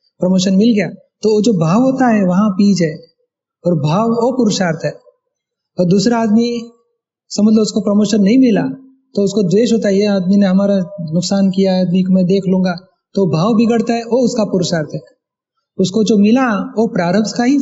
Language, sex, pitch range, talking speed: Hindi, male, 180-220 Hz, 200 wpm